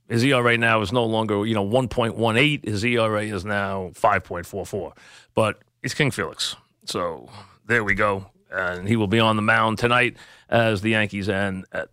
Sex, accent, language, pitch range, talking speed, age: male, American, English, 110-135 Hz, 205 wpm, 40-59